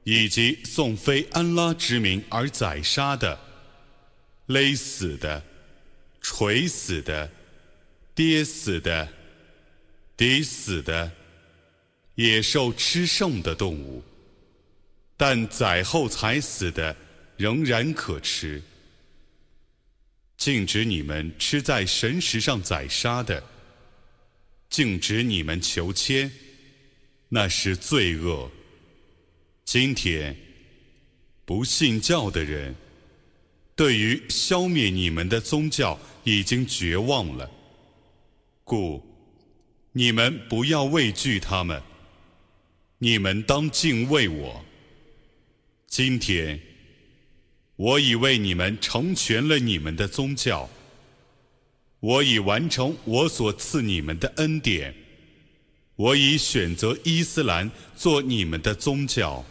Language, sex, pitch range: Arabic, male, 80-135 Hz